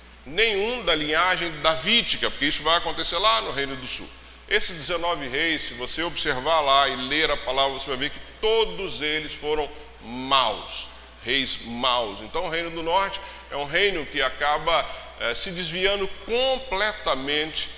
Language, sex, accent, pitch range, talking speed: Portuguese, male, Brazilian, 145-180 Hz, 160 wpm